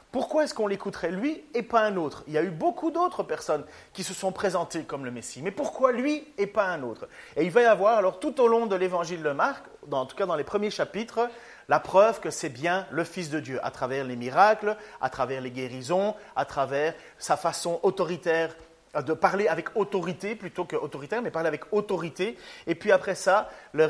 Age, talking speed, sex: 40-59, 220 wpm, male